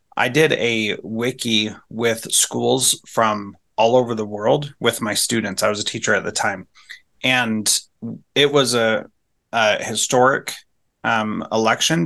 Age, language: 30-49, English